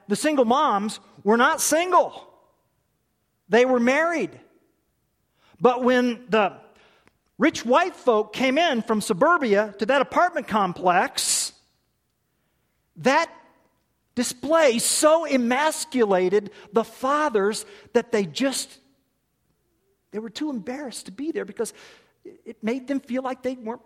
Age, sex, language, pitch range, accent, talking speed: 50-69, male, English, 190-285 Hz, American, 120 wpm